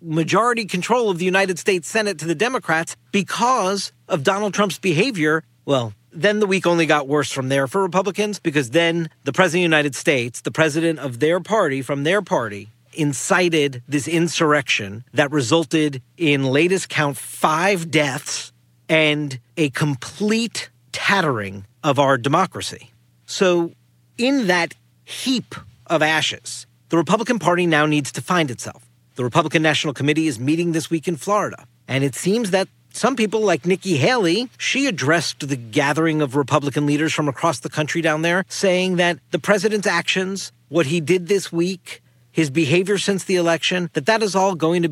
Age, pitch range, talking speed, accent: 40-59, 140-195 Hz, 170 wpm, American